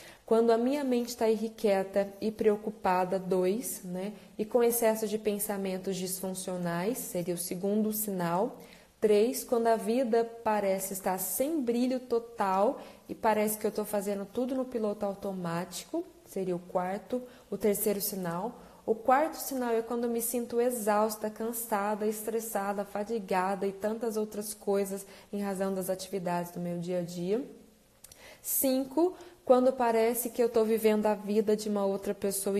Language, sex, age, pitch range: Portuguese, female, 20-39, 195-230 Hz